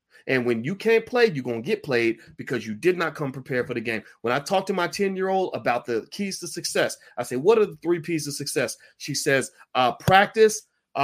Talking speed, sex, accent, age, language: 235 wpm, male, American, 30-49, English